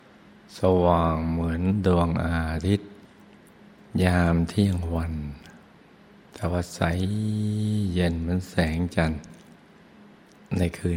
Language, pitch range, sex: Thai, 85-95 Hz, male